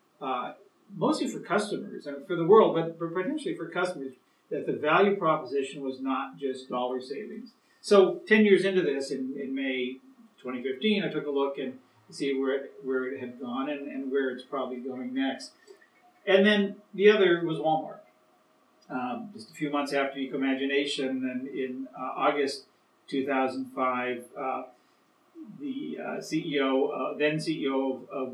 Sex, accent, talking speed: male, American, 155 wpm